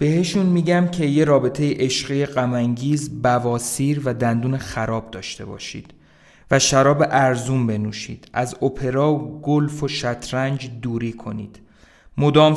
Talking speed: 120 wpm